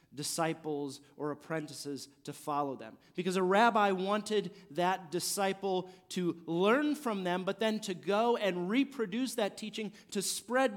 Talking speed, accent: 145 wpm, American